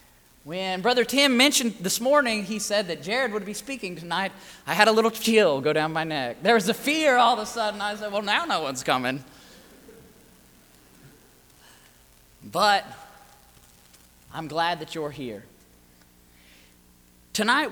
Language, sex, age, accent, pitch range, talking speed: English, male, 30-49, American, 140-220 Hz, 150 wpm